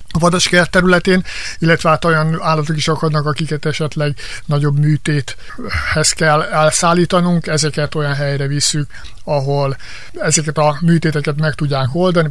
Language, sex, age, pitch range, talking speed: Hungarian, male, 60-79, 145-165 Hz, 120 wpm